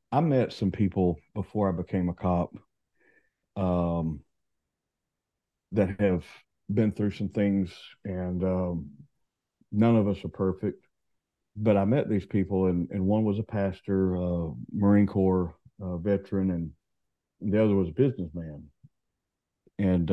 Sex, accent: male, American